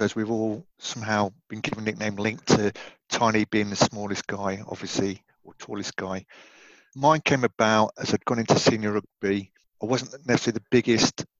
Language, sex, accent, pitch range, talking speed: English, male, British, 105-120 Hz, 175 wpm